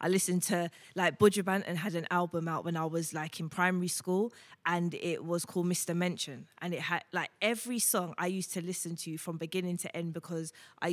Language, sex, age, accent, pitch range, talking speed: English, female, 20-39, British, 170-200 Hz, 220 wpm